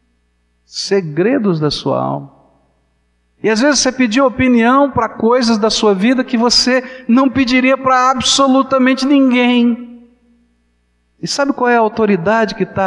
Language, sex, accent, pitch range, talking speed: Portuguese, male, Brazilian, 130-215 Hz, 140 wpm